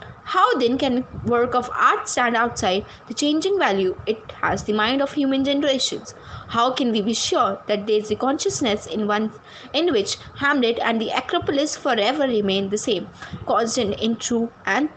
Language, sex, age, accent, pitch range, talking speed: English, female, 20-39, Indian, 215-290 Hz, 175 wpm